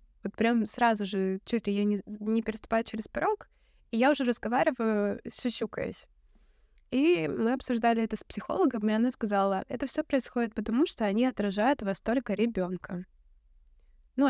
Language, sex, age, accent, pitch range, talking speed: Russian, female, 20-39, native, 200-235 Hz, 160 wpm